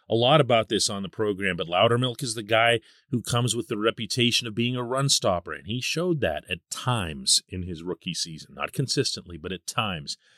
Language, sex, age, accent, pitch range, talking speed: English, male, 40-59, American, 110-155 Hz, 215 wpm